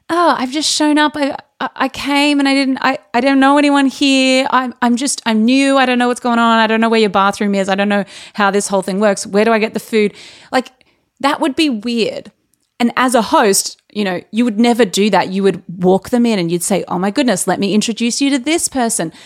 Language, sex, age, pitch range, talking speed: English, female, 30-49, 205-280 Hz, 260 wpm